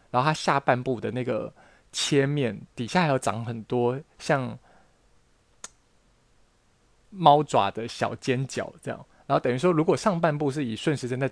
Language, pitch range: Chinese, 120-155 Hz